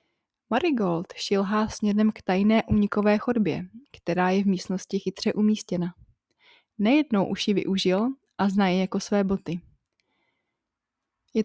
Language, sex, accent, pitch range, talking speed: Czech, female, native, 190-220 Hz, 125 wpm